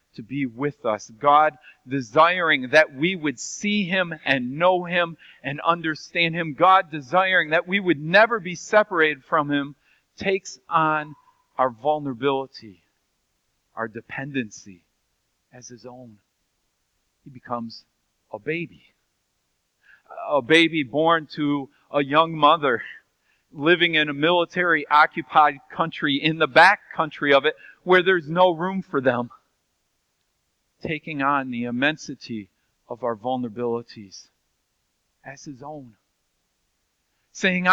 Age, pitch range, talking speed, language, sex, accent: 40-59, 135-180 Hz, 120 wpm, English, male, American